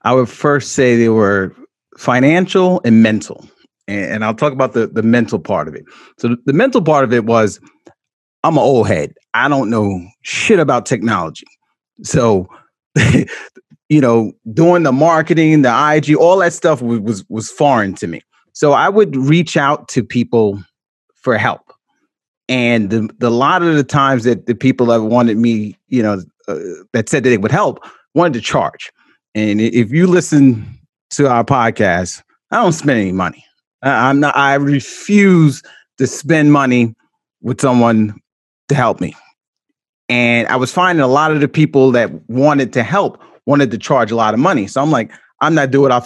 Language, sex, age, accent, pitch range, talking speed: English, male, 30-49, American, 115-150 Hz, 180 wpm